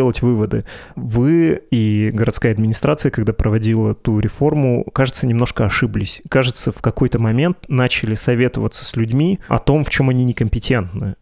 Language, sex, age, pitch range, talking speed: Russian, male, 20-39, 115-135 Hz, 135 wpm